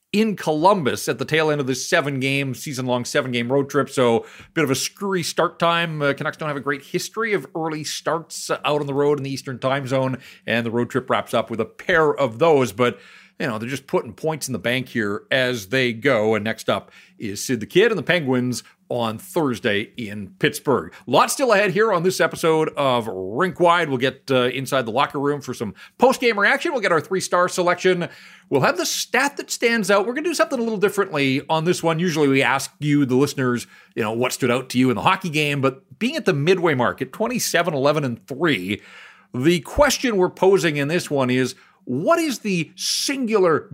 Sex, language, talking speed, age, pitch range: male, English, 220 wpm, 40-59, 125-175 Hz